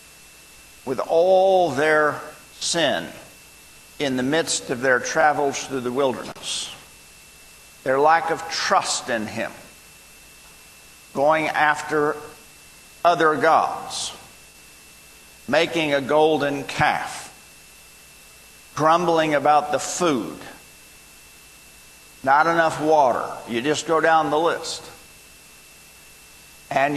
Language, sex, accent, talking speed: English, male, American, 90 wpm